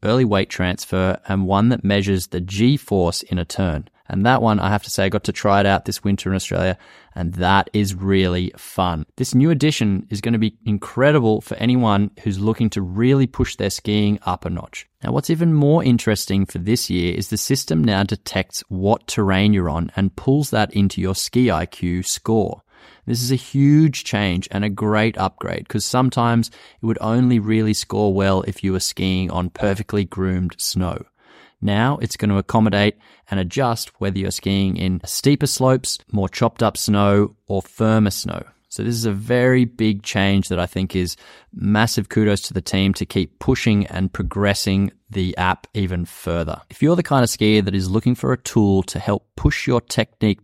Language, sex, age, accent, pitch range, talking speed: English, male, 20-39, Australian, 95-115 Hz, 195 wpm